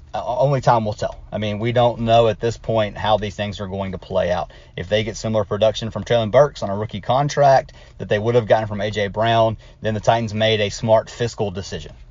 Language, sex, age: English, male, 30-49